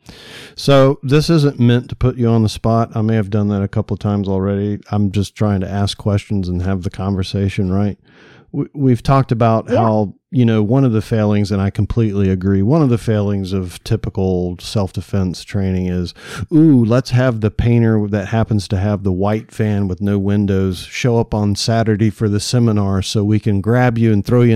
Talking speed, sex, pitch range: 205 wpm, male, 95-110 Hz